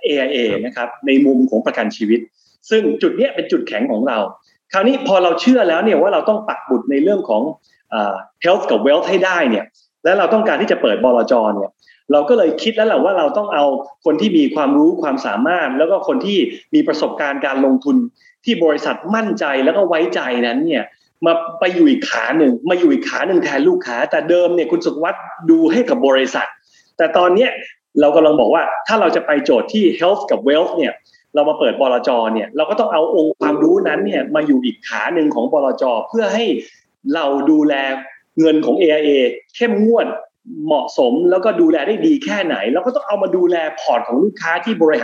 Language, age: Thai, 20-39